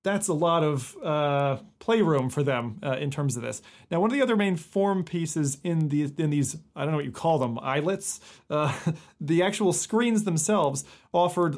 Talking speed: 195 wpm